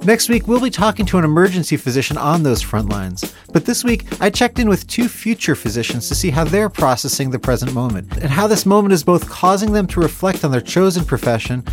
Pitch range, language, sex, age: 135-190 Hz, English, male, 30-49